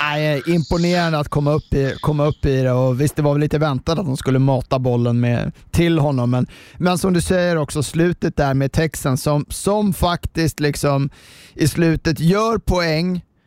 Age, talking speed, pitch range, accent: 30-49, 190 wpm, 130-165 Hz, native